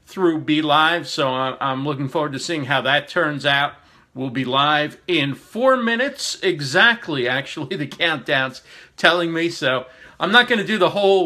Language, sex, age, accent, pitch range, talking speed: English, male, 50-69, American, 145-195 Hz, 175 wpm